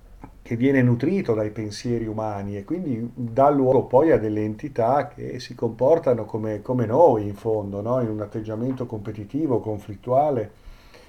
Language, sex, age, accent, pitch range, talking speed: Italian, male, 50-69, native, 105-125 Hz, 145 wpm